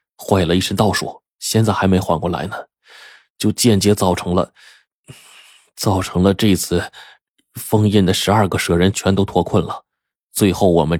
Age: 20-39